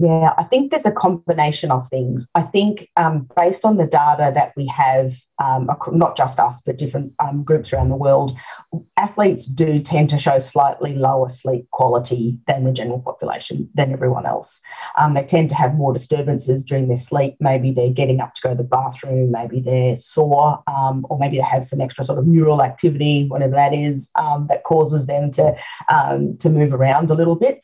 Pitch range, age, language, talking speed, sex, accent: 135-175 Hz, 40-59, English, 200 wpm, female, Australian